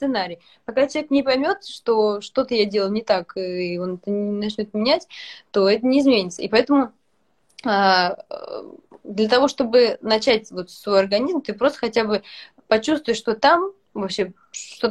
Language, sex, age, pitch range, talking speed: Russian, female, 20-39, 200-255 Hz, 155 wpm